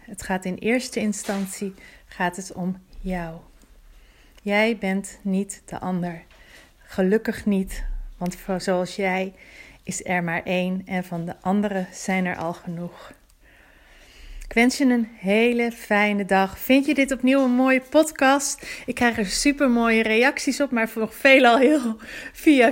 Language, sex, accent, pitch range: Dutch, female, Dutch, 195-245 Hz